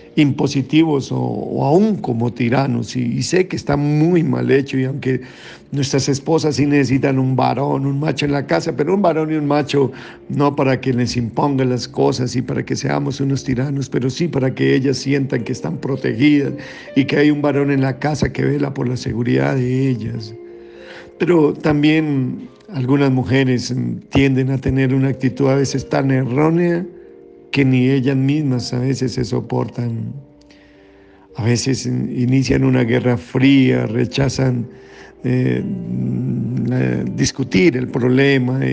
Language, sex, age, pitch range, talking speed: Spanish, male, 50-69, 125-145 Hz, 160 wpm